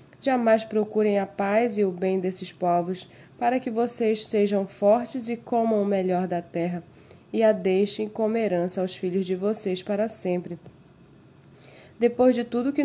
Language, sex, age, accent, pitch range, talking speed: Portuguese, female, 20-39, Brazilian, 180-225 Hz, 170 wpm